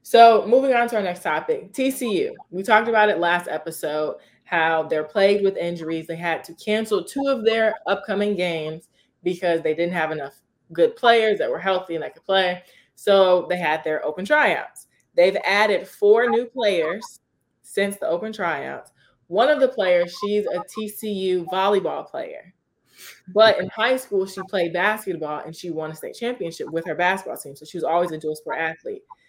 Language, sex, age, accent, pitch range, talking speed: English, female, 20-39, American, 170-215 Hz, 185 wpm